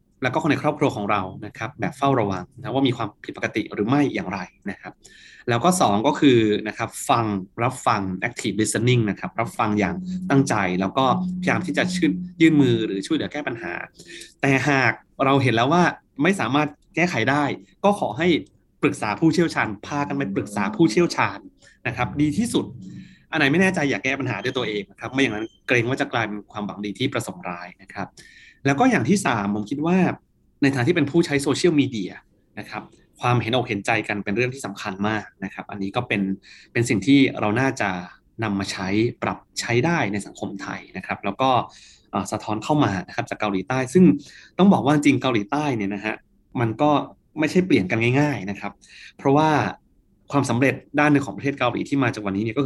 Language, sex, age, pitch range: Thai, male, 20-39, 105-145 Hz